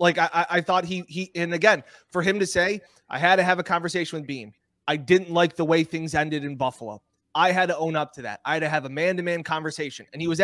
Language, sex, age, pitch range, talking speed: English, male, 20-39, 160-200 Hz, 270 wpm